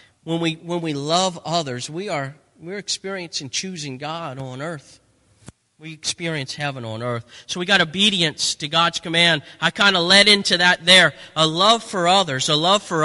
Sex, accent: male, American